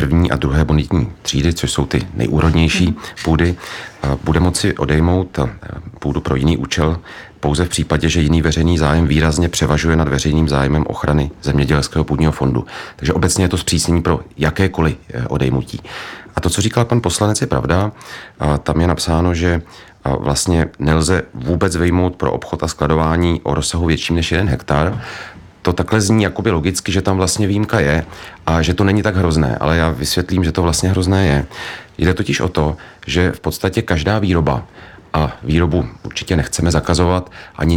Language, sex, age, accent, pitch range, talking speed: Czech, male, 40-59, native, 75-90 Hz, 170 wpm